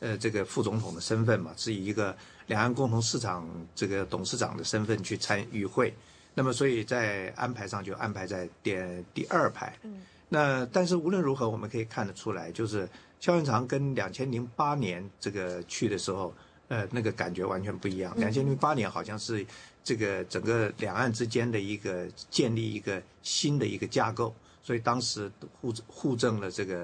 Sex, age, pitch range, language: male, 50-69, 100-125 Hz, English